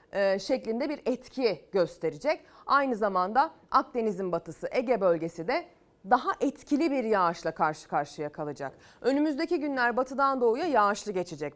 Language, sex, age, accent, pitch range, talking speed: Turkish, female, 30-49, native, 195-285 Hz, 125 wpm